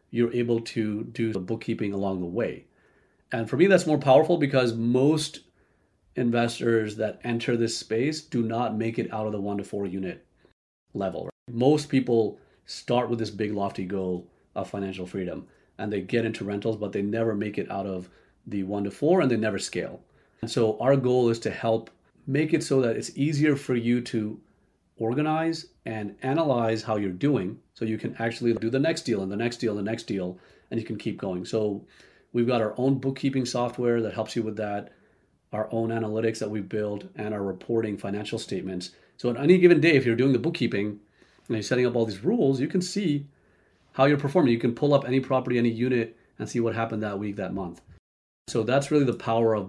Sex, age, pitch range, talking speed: male, 40-59, 105-125 Hz, 210 wpm